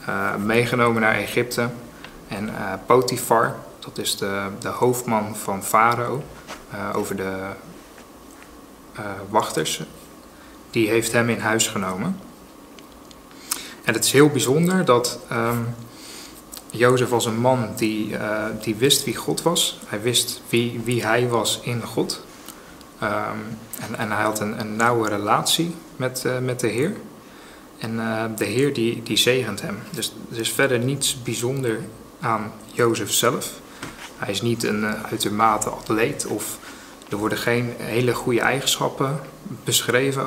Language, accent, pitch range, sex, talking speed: Dutch, Dutch, 110-130 Hz, male, 145 wpm